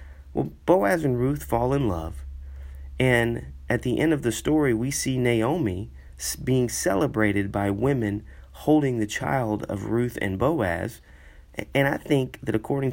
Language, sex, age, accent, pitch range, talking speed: English, male, 40-59, American, 90-120 Hz, 155 wpm